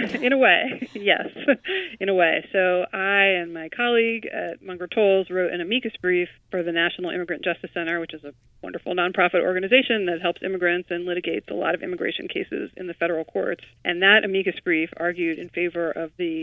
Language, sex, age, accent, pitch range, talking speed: English, female, 30-49, American, 165-185 Hz, 195 wpm